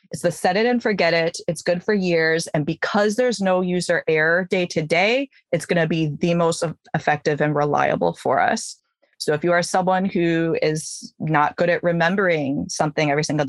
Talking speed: 200 wpm